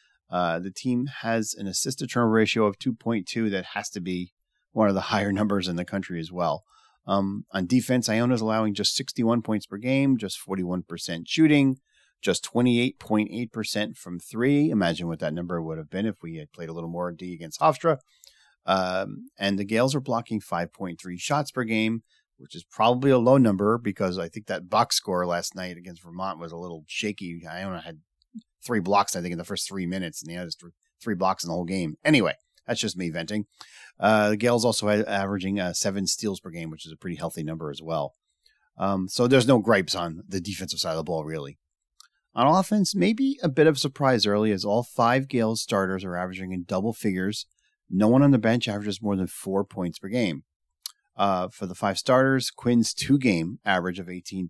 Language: English